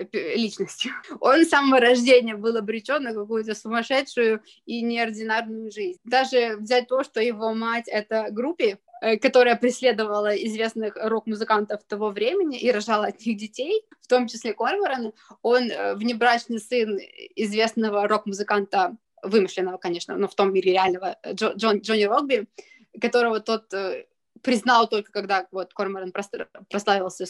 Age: 20-39